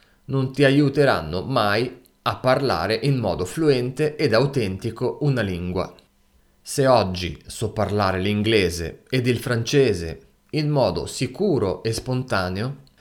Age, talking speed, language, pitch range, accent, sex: 30-49, 120 wpm, Italian, 95-140 Hz, native, male